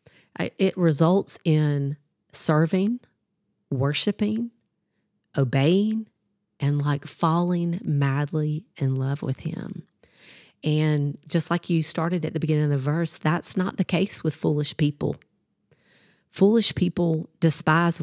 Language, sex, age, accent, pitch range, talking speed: English, female, 40-59, American, 145-170 Hz, 115 wpm